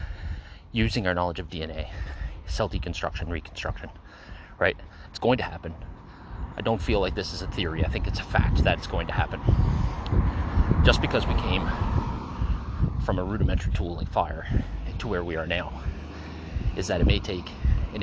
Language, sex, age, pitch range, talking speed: English, male, 30-49, 80-100 Hz, 175 wpm